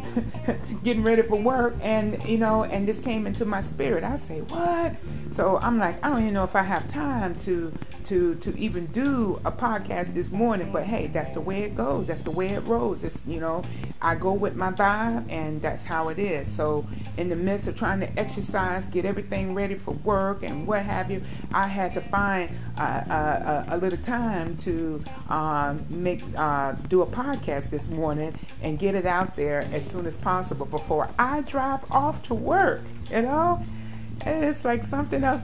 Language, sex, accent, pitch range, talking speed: English, female, American, 160-210 Hz, 200 wpm